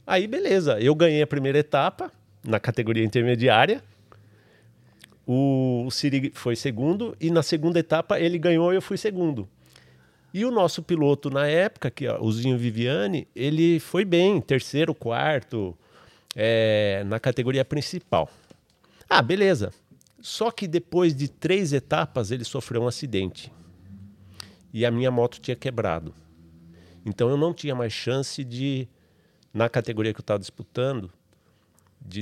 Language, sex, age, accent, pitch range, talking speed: Portuguese, male, 40-59, Brazilian, 110-155 Hz, 145 wpm